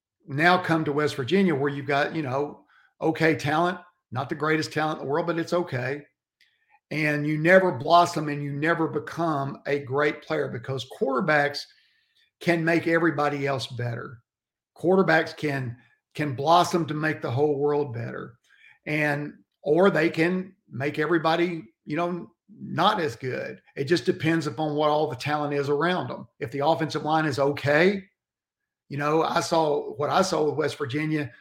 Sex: male